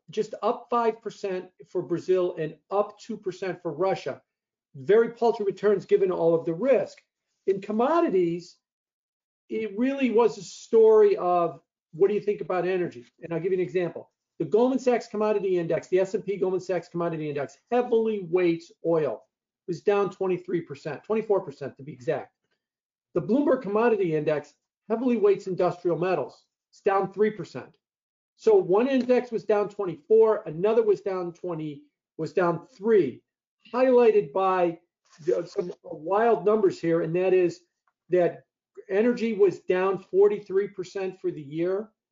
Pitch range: 175-220 Hz